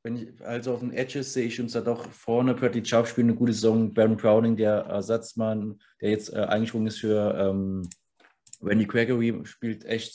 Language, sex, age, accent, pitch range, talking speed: German, male, 20-39, German, 105-120 Hz, 185 wpm